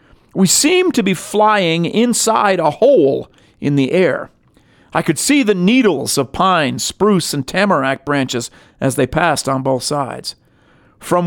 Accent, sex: American, male